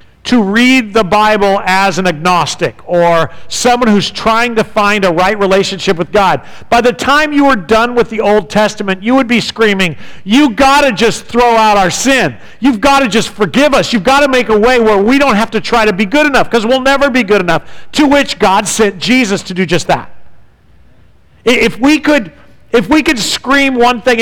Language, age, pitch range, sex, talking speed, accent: English, 50-69, 195-255 Hz, male, 215 wpm, American